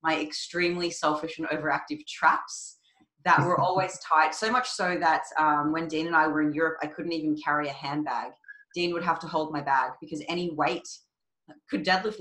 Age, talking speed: 20-39, 195 wpm